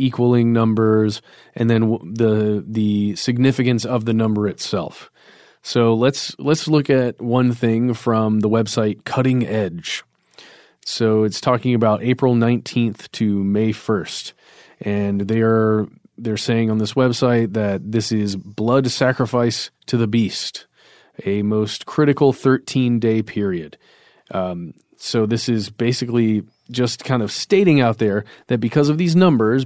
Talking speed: 140 wpm